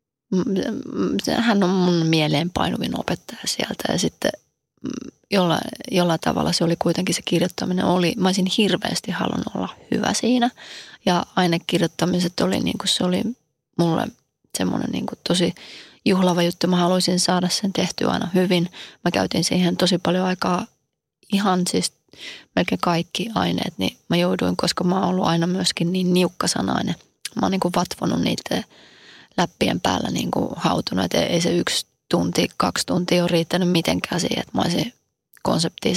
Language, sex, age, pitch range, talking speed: Finnish, female, 30-49, 170-190 Hz, 145 wpm